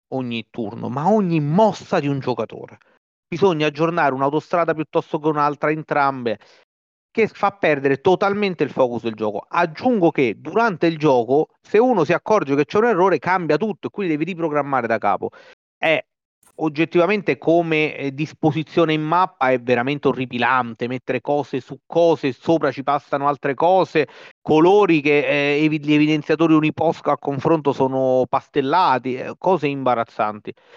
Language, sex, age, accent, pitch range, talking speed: Italian, male, 40-59, native, 120-155 Hz, 145 wpm